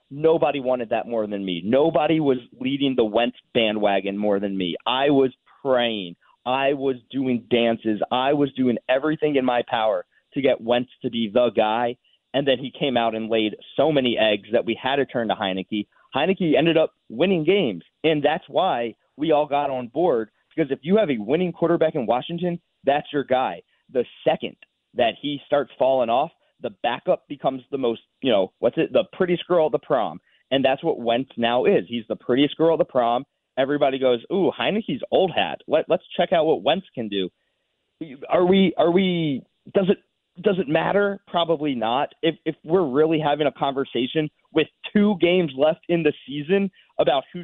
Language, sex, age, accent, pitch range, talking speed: English, male, 30-49, American, 120-165 Hz, 195 wpm